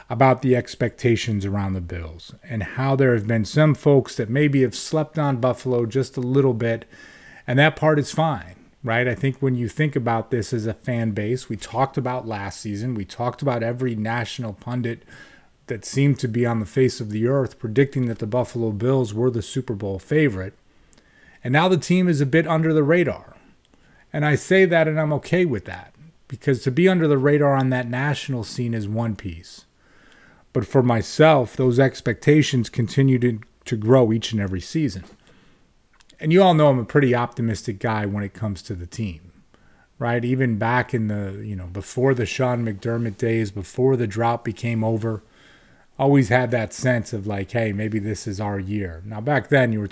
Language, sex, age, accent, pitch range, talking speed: English, male, 30-49, American, 110-135 Hz, 195 wpm